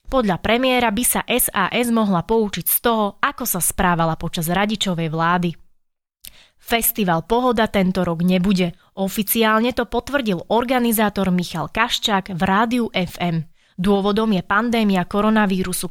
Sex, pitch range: female, 180-230 Hz